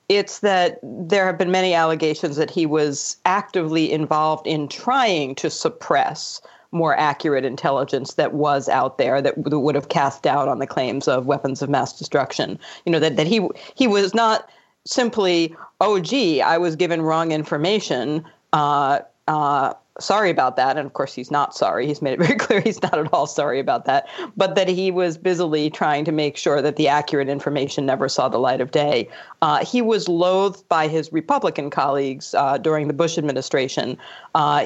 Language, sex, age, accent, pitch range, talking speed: English, female, 40-59, American, 145-175 Hz, 185 wpm